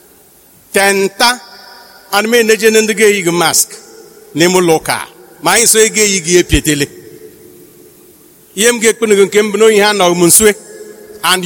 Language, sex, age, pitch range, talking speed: English, male, 60-79, 185-270 Hz, 85 wpm